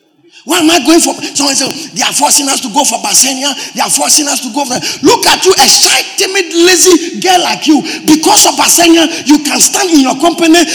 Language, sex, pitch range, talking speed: English, male, 265-370 Hz, 230 wpm